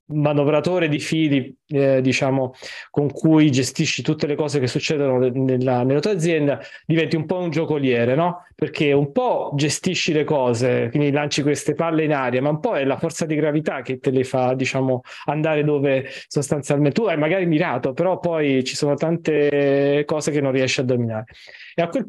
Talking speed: 185 wpm